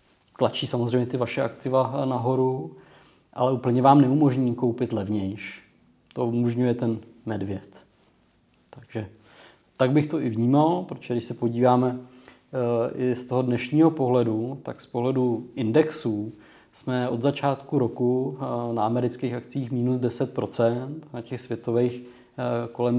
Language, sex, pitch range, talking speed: Czech, male, 120-135 Hz, 125 wpm